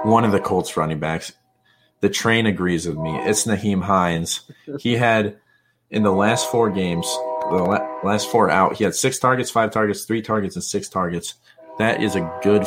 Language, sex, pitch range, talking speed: English, male, 90-120 Hz, 190 wpm